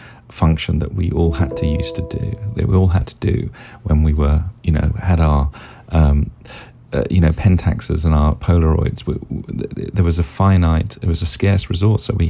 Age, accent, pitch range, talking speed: 40-59, British, 80-105 Hz, 210 wpm